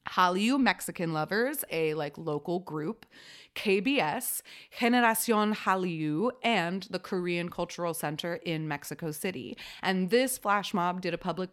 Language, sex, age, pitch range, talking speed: English, female, 30-49, 160-210 Hz, 130 wpm